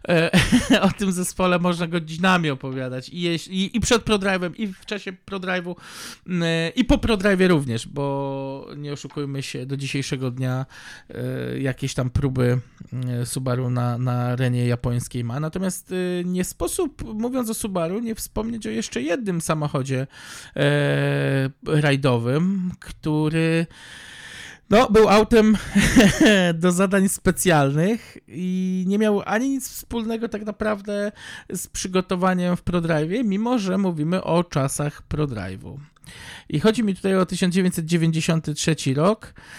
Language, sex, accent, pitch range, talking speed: Polish, male, native, 145-195 Hz, 120 wpm